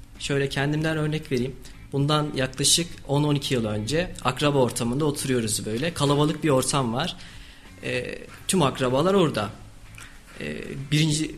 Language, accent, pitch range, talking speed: Turkish, native, 130-175 Hz, 120 wpm